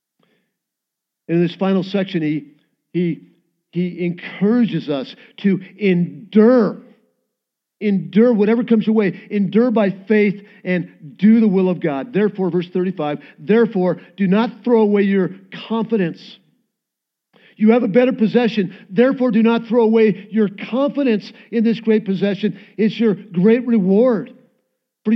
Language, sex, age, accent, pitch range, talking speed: English, male, 50-69, American, 180-225 Hz, 135 wpm